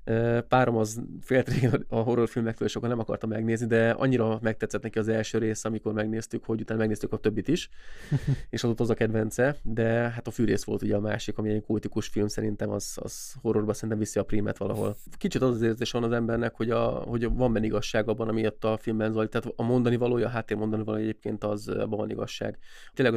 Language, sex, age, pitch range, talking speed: Hungarian, male, 20-39, 105-115 Hz, 200 wpm